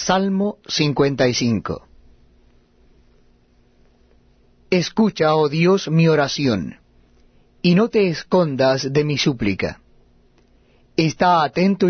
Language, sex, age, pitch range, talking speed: Spanish, male, 40-59, 130-180 Hz, 80 wpm